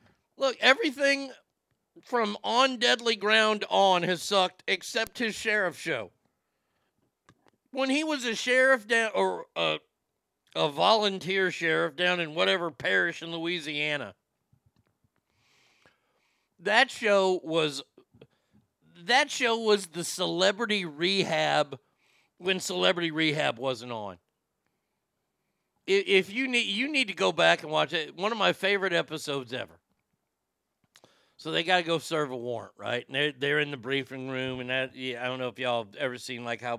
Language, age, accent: English, 50-69, American